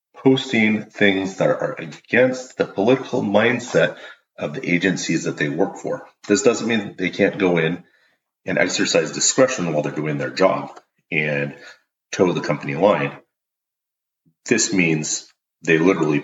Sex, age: male, 30-49